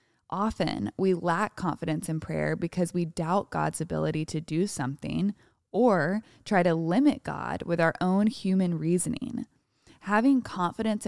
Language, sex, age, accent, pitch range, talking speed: English, female, 20-39, American, 170-215 Hz, 140 wpm